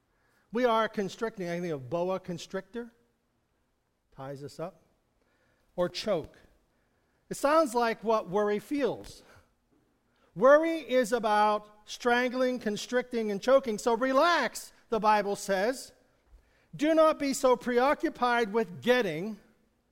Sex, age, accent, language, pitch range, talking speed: male, 50-69, American, English, 200-265 Hz, 115 wpm